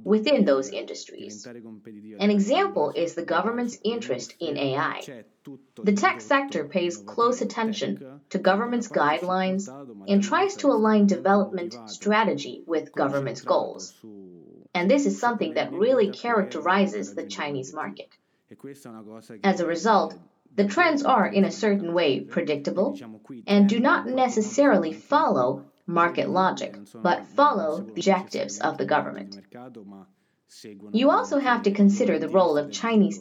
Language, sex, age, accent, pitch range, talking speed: English, female, 30-49, American, 145-215 Hz, 130 wpm